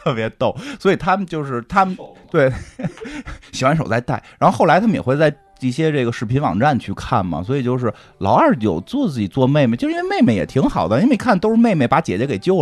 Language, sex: Chinese, male